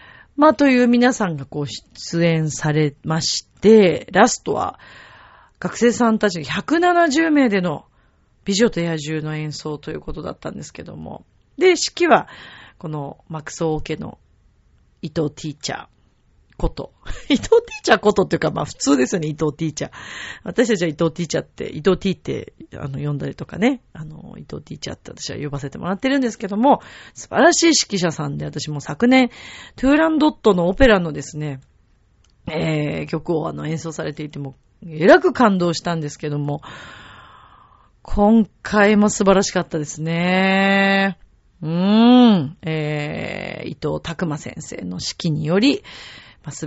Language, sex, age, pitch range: Japanese, female, 40-59, 155-235 Hz